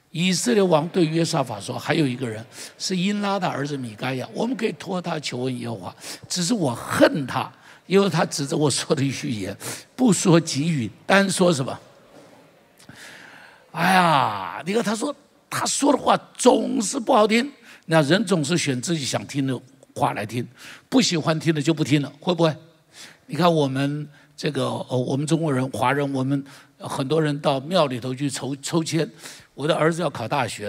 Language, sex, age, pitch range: Chinese, male, 60-79, 135-185 Hz